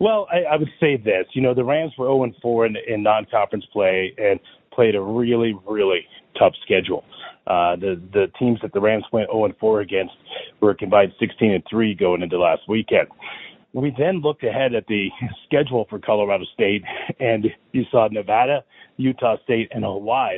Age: 40-59